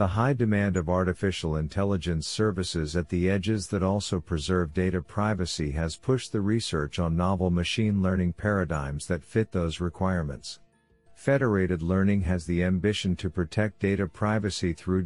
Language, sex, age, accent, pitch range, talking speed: English, male, 50-69, American, 85-105 Hz, 150 wpm